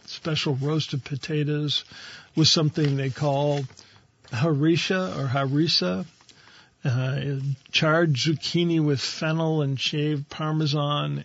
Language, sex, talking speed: English, male, 95 wpm